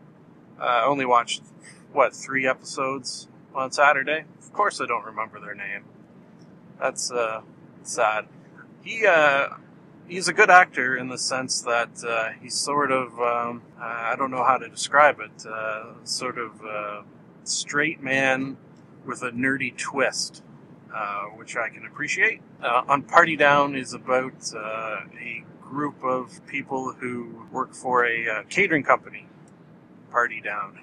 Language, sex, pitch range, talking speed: English, male, 115-135 Hz, 145 wpm